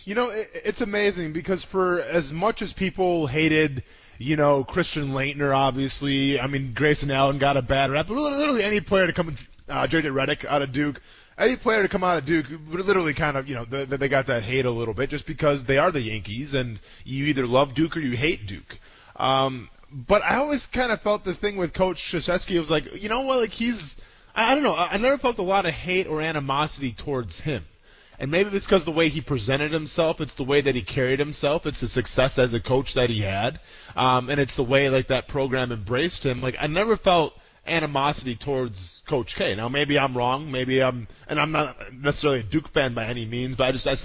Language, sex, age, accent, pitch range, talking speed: English, male, 20-39, American, 130-175 Hz, 230 wpm